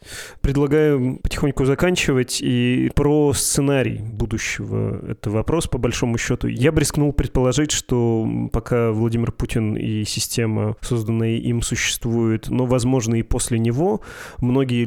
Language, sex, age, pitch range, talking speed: Russian, male, 30-49, 115-130 Hz, 125 wpm